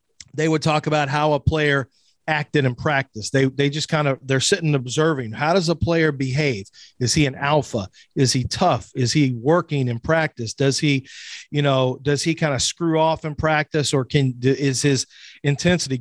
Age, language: 40-59, English